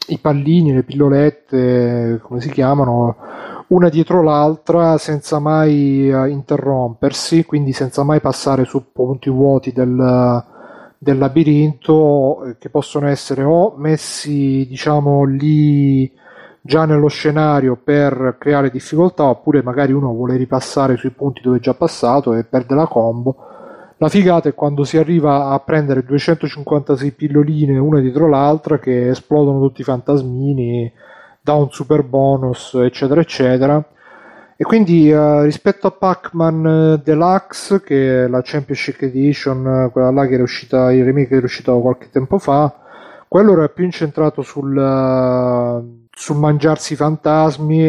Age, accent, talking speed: 30-49, native, 140 wpm